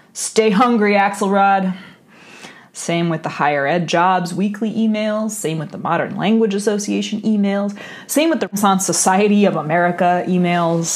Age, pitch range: 30-49, 160-205 Hz